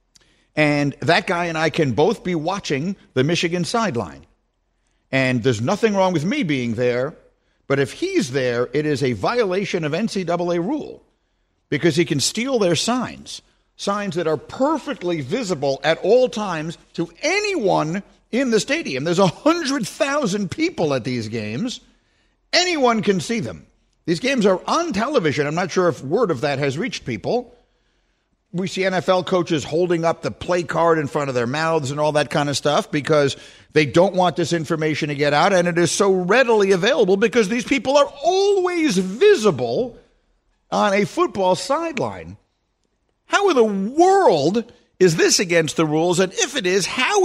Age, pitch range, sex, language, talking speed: 50-69, 155-235 Hz, male, English, 170 wpm